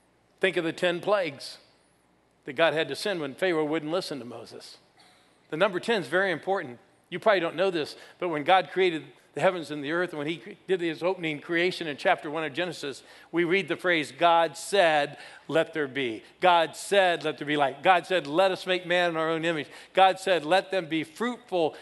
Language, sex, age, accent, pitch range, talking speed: English, male, 50-69, American, 150-180 Hz, 215 wpm